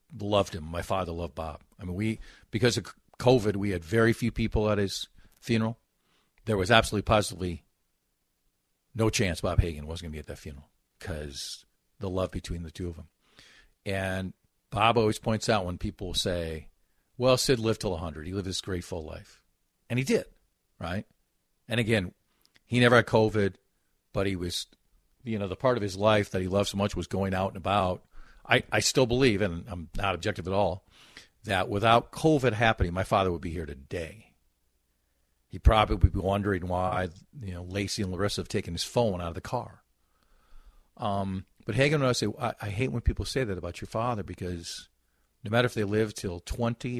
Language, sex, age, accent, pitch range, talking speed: English, male, 50-69, American, 85-110 Hz, 200 wpm